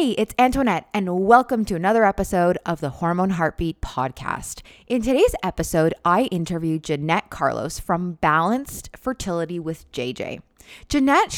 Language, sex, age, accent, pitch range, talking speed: English, female, 20-39, American, 165-220 Hz, 135 wpm